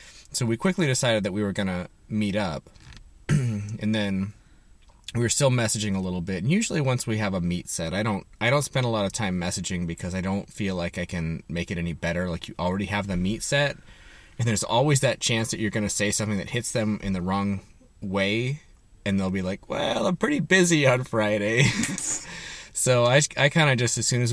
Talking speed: 230 wpm